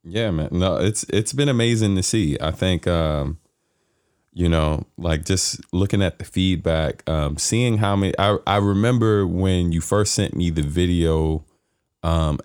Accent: American